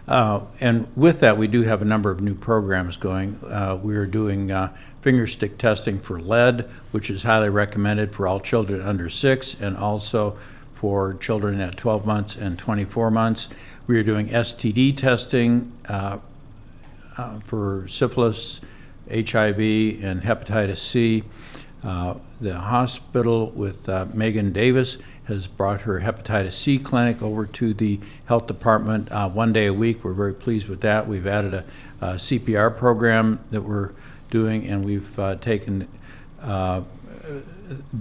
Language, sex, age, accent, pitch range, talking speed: English, male, 60-79, American, 100-120 Hz, 155 wpm